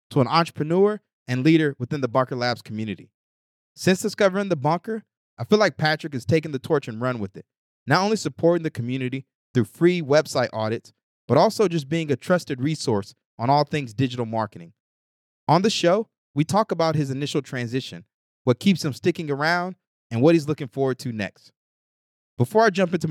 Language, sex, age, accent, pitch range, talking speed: English, male, 30-49, American, 120-170 Hz, 185 wpm